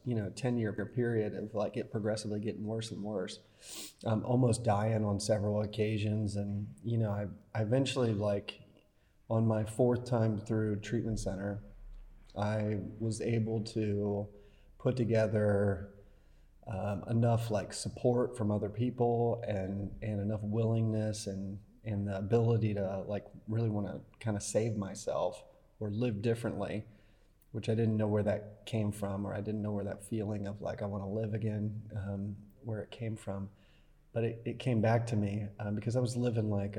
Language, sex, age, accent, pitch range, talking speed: Finnish, male, 30-49, American, 105-115 Hz, 170 wpm